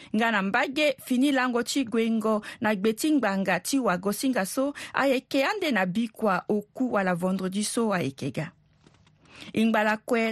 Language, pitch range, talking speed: French, 205-265 Hz, 130 wpm